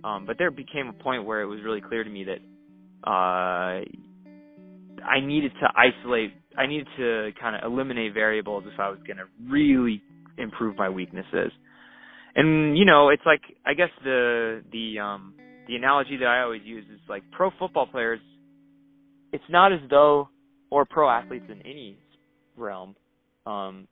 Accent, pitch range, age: American, 105-140 Hz, 20-39